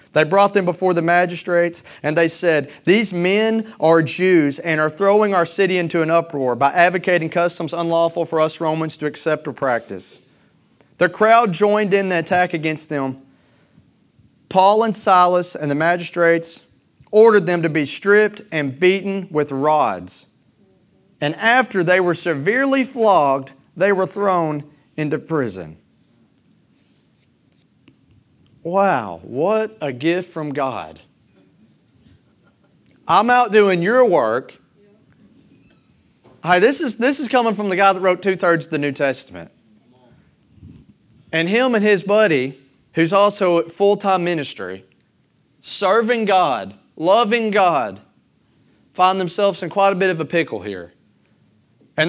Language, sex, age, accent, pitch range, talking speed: English, male, 40-59, American, 155-205 Hz, 135 wpm